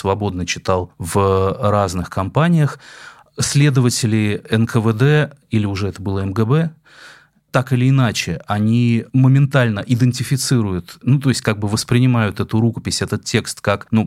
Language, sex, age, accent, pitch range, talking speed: Russian, male, 30-49, native, 95-125 Hz, 130 wpm